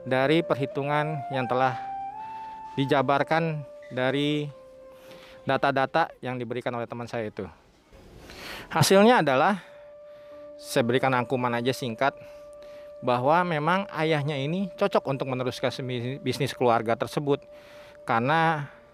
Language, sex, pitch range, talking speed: Indonesian, male, 125-180 Hz, 100 wpm